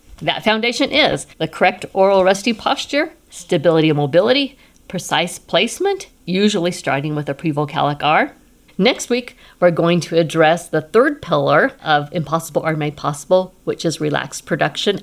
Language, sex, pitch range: English, female, 160-205 Hz